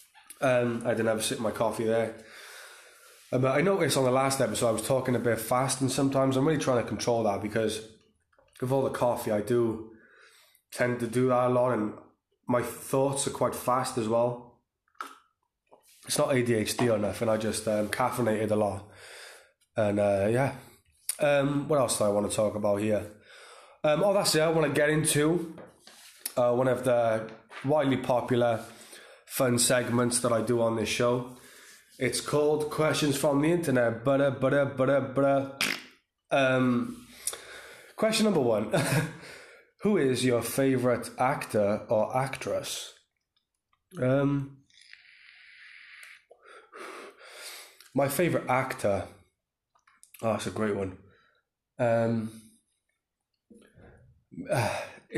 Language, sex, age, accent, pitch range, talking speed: English, male, 20-39, British, 110-140 Hz, 140 wpm